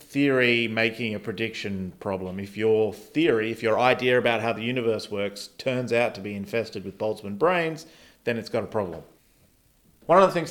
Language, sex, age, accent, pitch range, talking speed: English, male, 30-49, Australian, 105-130 Hz, 190 wpm